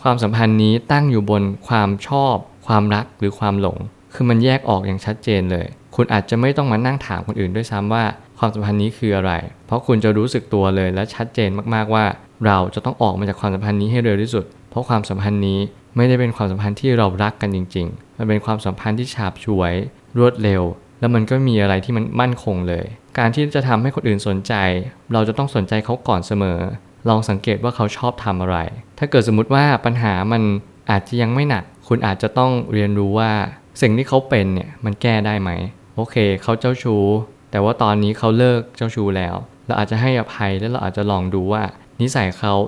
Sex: male